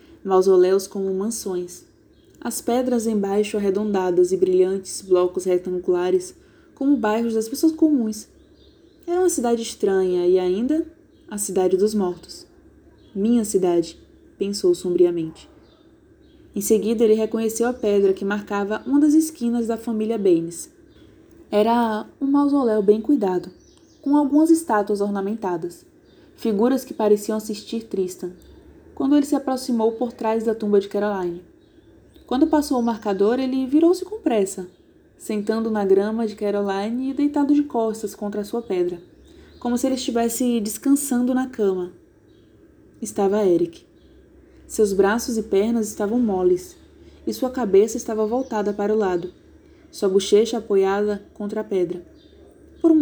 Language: Portuguese